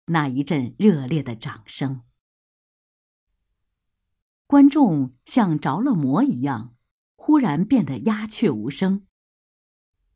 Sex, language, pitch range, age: female, Chinese, 125-210 Hz, 50-69